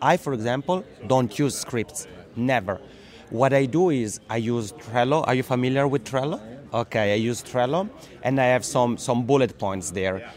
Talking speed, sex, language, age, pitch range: 180 wpm, male, English, 30-49, 110-140 Hz